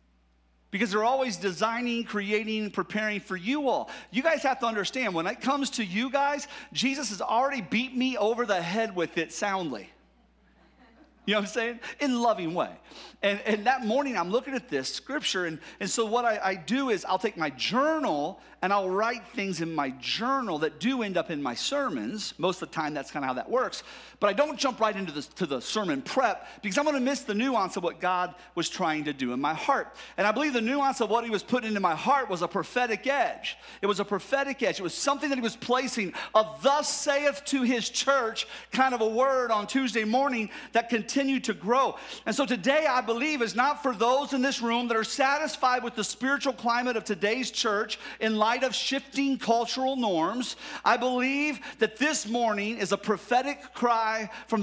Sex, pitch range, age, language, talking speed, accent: male, 205-265 Hz, 40-59, English, 215 wpm, American